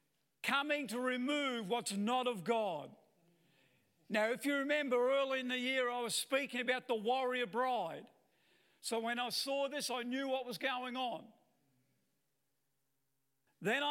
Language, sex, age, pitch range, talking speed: English, male, 50-69, 215-270 Hz, 145 wpm